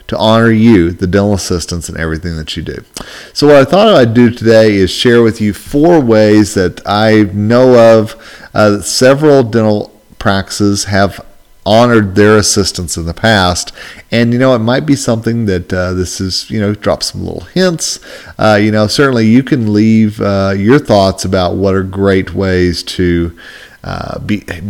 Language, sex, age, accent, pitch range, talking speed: English, male, 40-59, American, 95-115 Hz, 180 wpm